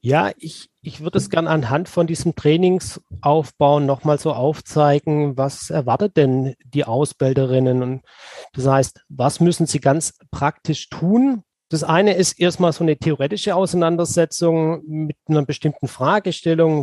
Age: 30-49